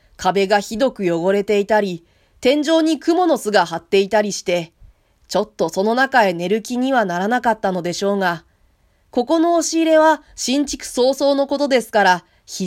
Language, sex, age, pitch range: Japanese, female, 20-39, 185-270 Hz